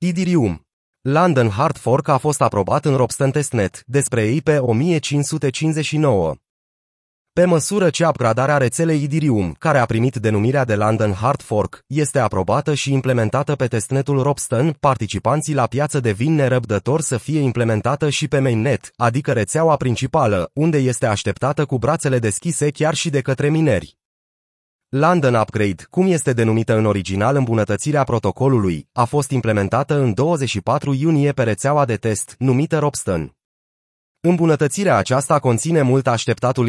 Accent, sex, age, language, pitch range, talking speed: native, male, 30-49, Romanian, 110-150 Hz, 140 wpm